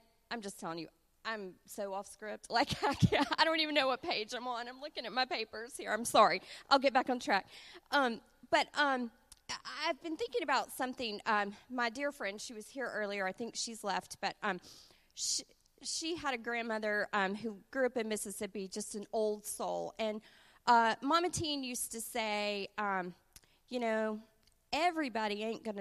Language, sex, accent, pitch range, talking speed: English, female, American, 205-270 Hz, 190 wpm